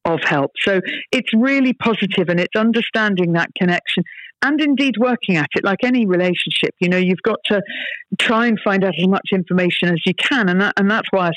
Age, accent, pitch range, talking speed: 50-69, British, 170-215 Hz, 210 wpm